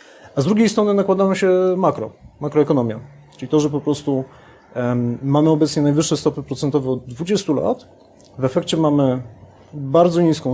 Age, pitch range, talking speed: 30-49, 130-175 Hz, 150 wpm